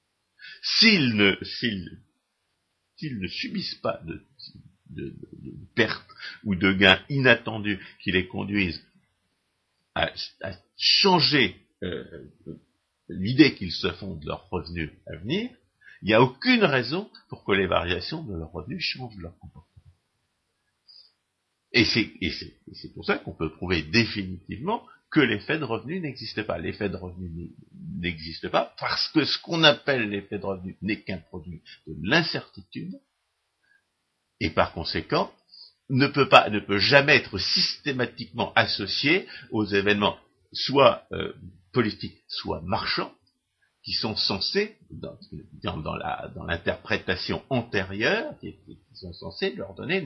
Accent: French